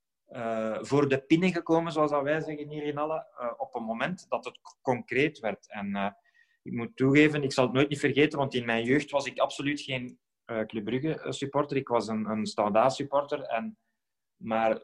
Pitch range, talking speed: 120-155 Hz, 205 wpm